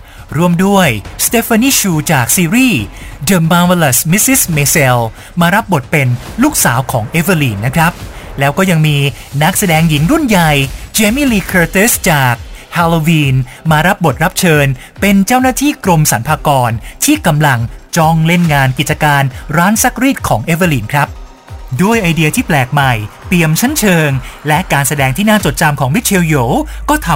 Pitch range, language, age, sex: 140-195 Hz, Thai, 20-39, male